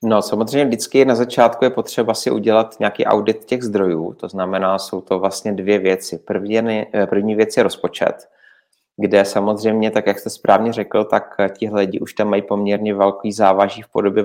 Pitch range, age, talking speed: 100-115 Hz, 30-49, 180 wpm